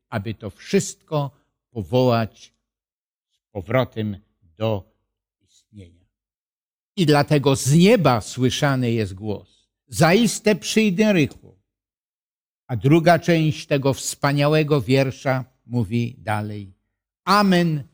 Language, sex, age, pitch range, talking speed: Polish, male, 50-69, 110-175 Hz, 90 wpm